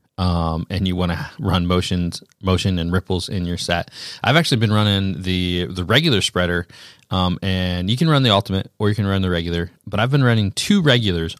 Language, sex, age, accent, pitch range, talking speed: English, male, 20-39, American, 90-110 Hz, 210 wpm